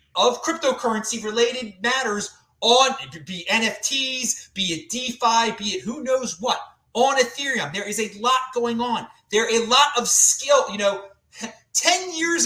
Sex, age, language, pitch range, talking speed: male, 30-49, English, 195-280 Hz, 160 wpm